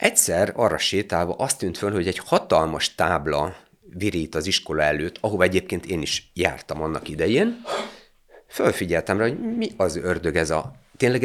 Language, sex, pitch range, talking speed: Hungarian, male, 85-125 Hz, 160 wpm